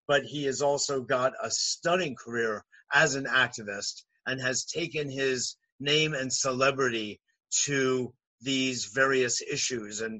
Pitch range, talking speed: 125-165 Hz, 135 wpm